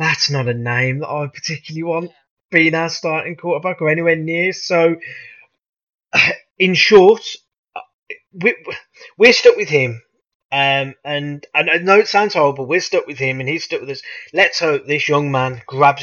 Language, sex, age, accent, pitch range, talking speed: English, male, 20-39, British, 130-165 Hz, 170 wpm